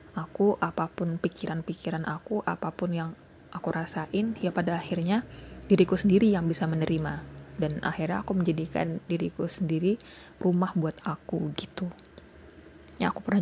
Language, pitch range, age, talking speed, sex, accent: Indonesian, 165-195 Hz, 20-39, 130 wpm, female, native